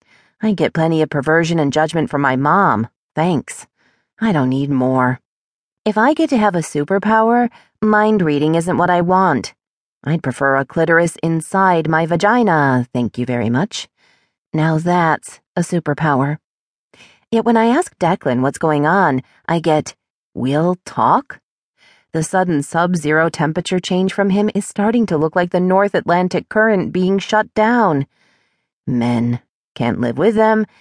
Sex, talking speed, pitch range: female, 155 wpm, 145-210 Hz